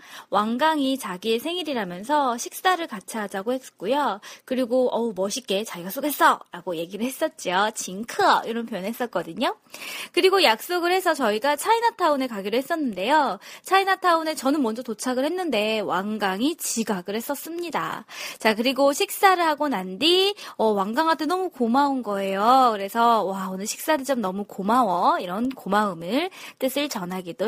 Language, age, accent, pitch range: Korean, 20-39, native, 215-320 Hz